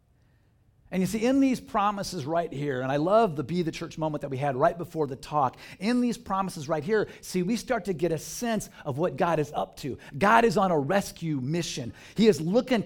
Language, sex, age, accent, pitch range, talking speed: English, male, 50-69, American, 120-185 Hz, 235 wpm